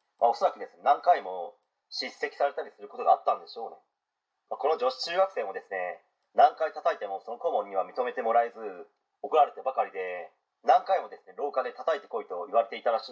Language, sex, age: Japanese, male, 40-59